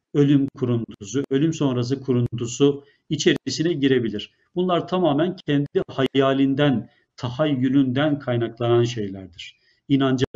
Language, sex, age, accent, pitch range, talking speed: Turkish, male, 50-69, native, 120-145 Hz, 85 wpm